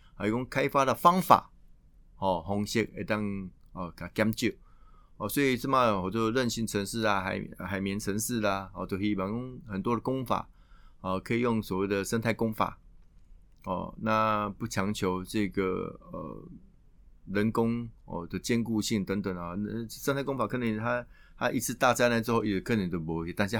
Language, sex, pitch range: Chinese, male, 95-115 Hz